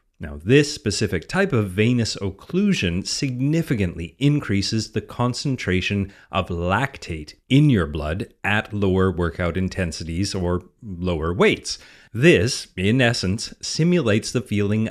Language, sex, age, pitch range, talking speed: English, male, 30-49, 90-120 Hz, 115 wpm